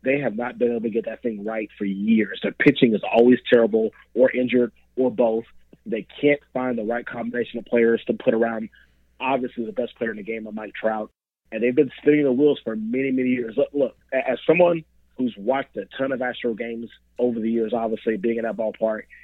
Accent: American